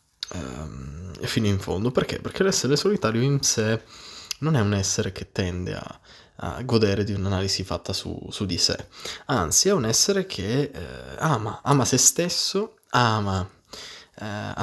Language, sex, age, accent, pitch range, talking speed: Italian, male, 20-39, native, 100-140 Hz, 150 wpm